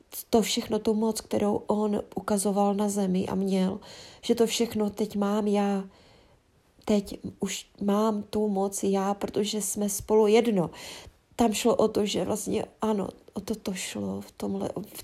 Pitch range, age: 195-220 Hz, 30-49